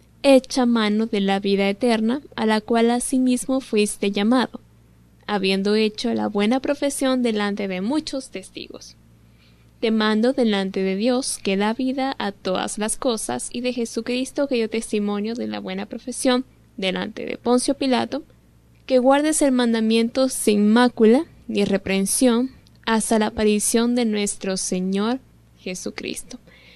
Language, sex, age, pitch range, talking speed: Spanish, female, 10-29, 200-250 Hz, 140 wpm